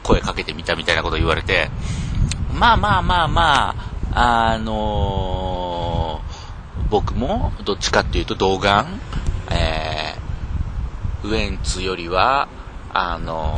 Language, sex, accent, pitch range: Japanese, male, native, 80-105 Hz